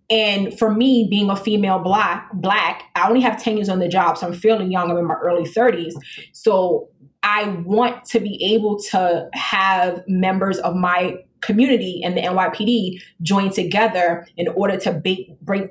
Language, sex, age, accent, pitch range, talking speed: English, female, 20-39, American, 180-225 Hz, 180 wpm